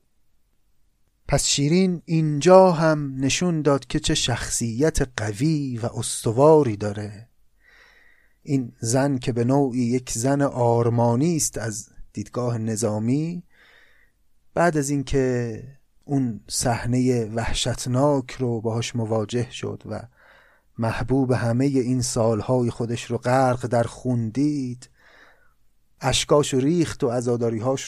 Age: 30-49